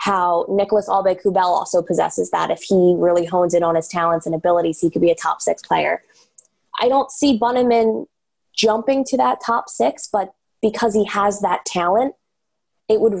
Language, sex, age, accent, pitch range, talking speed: English, female, 20-39, American, 180-225 Hz, 185 wpm